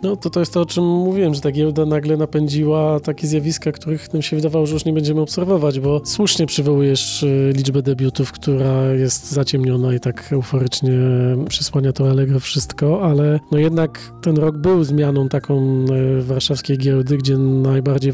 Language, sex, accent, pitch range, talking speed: Polish, male, native, 130-150 Hz, 170 wpm